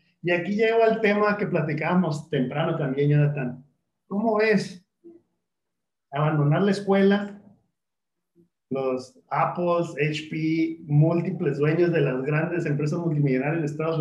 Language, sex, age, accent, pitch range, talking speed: Spanish, male, 40-59, Mexican, 145-180 Hz, 115 wpm